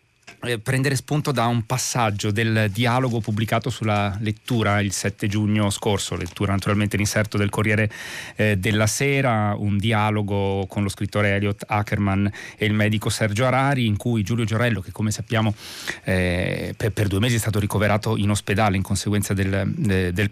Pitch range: 105-120 Hz